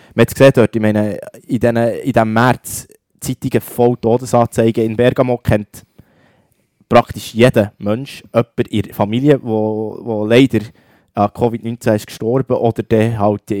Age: 20-39